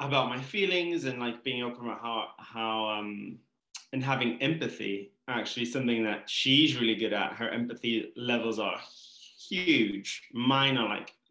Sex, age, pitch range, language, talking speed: male, 20-39, 110-125 Hz, English, 155 wpm